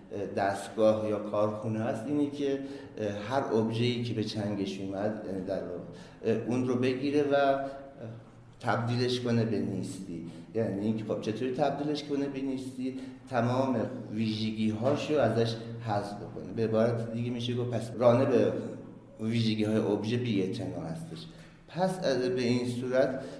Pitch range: 105-125 Hz